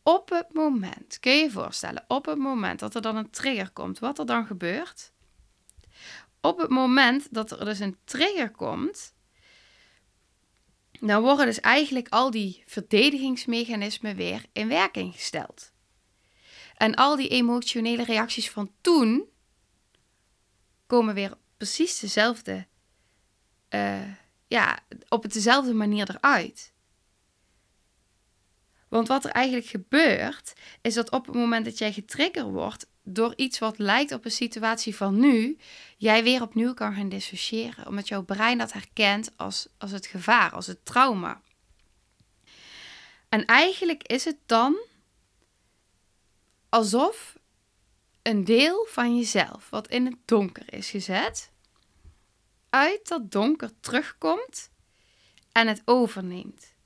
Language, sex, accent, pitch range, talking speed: Dutch, female, Dutch, 190-255 Hz, 125 wpm